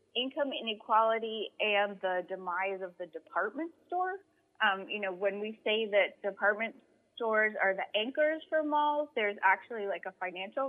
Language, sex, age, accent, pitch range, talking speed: English, female, 20-39, American, 190-235 Hz, 155 wpm